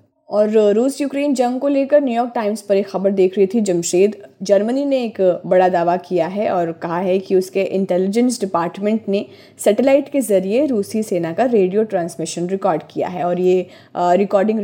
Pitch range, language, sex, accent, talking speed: 180-220 Hz, Hindi, female, native, 180 wpm